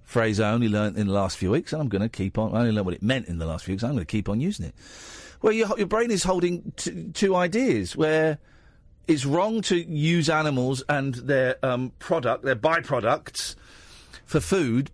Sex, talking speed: male, 230 wpm